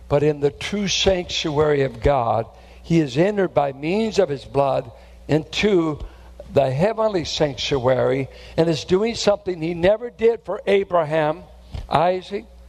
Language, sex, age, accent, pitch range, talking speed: English, male, 60-79, American, 140-185 Hz, 135 wpm